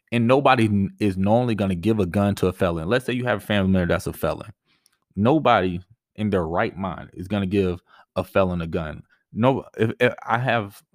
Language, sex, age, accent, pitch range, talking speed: English, male, 20-39, American, 95-115 Hz, 220 wpm